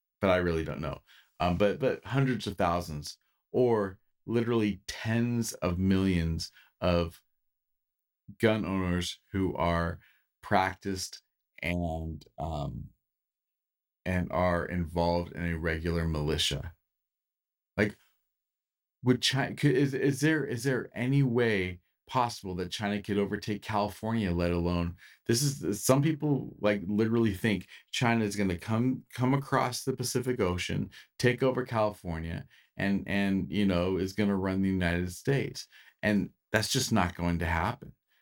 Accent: American